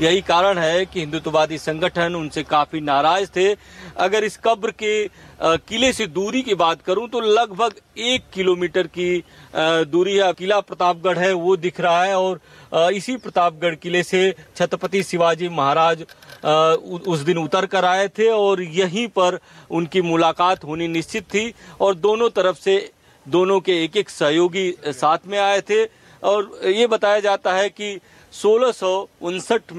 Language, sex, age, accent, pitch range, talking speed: English, male, 40-59, Indian, 170-205 Hz, 115 wpm